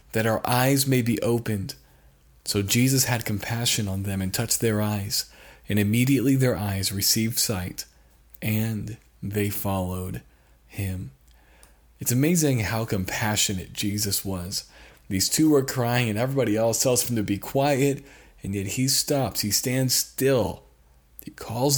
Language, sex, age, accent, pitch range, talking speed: English, male, 40-59, American, 100-130 Hz, 145 wpm